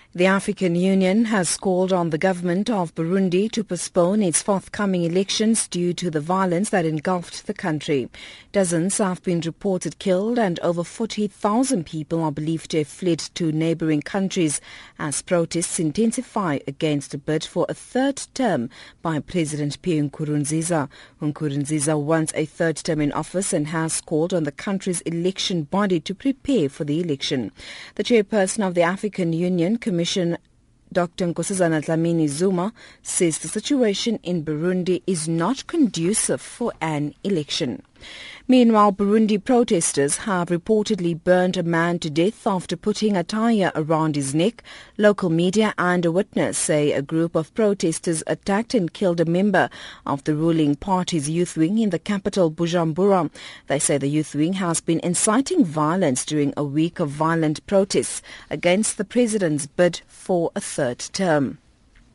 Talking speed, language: 155 wpm, English